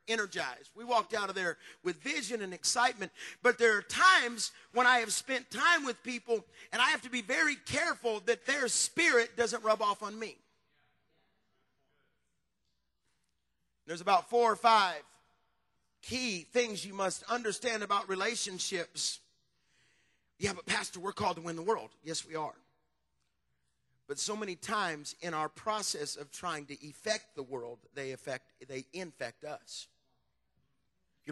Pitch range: 165-230 Hz